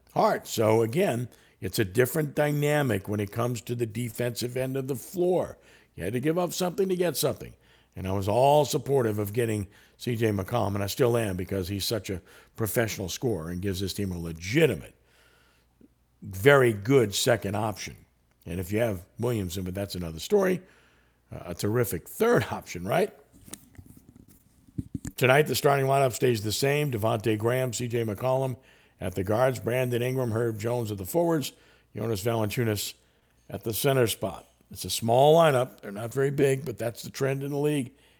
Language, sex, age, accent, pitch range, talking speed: English, male, 50-69, American, 100-135 Hz, 175 wpm